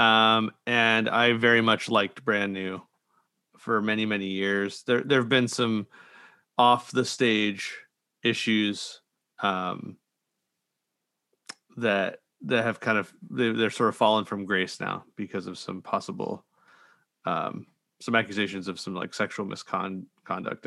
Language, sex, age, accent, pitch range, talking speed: English, male, 30-49, American, 100-125 Hz, 130 wpm